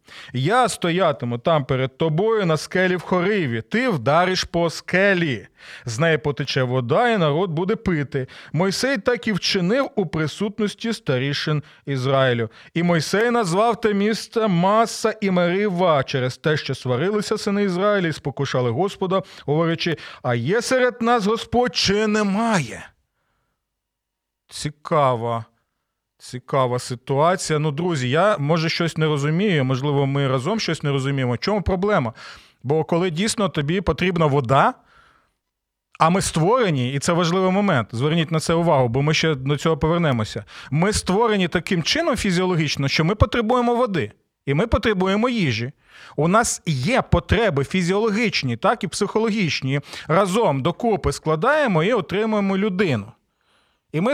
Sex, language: male, Ukrainian